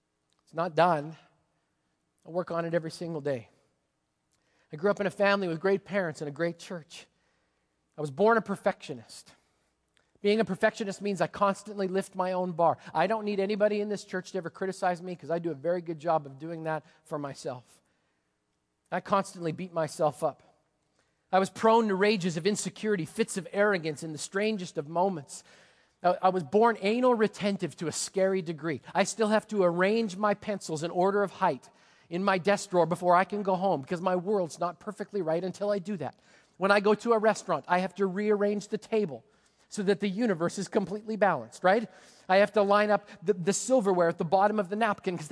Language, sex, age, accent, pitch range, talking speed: English, male, 40-59, American, 170-205 Hz, 205 wpm